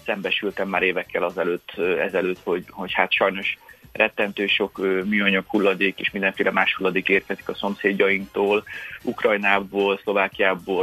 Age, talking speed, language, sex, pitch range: 30-49, 120 wpm, Hungarian, male, 95-110 Hz